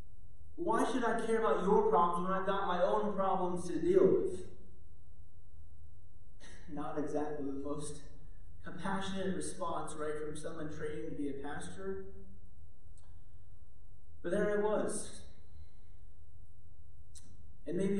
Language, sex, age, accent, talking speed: English, male, 30-49, American, 120 wpm